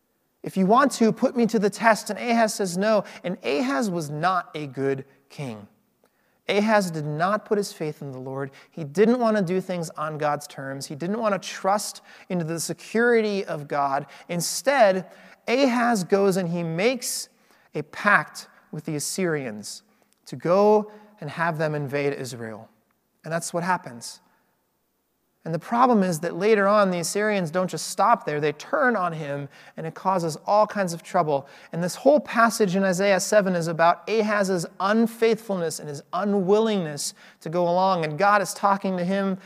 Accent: American